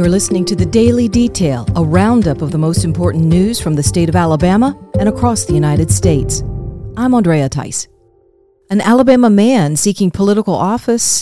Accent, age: American, 40-59